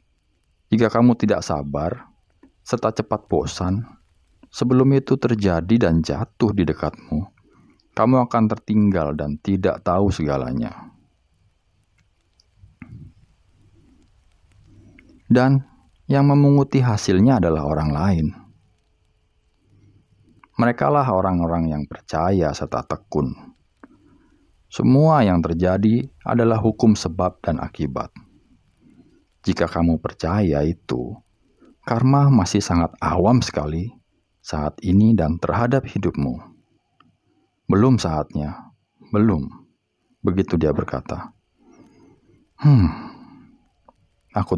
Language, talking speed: Indonesian, 85 wpm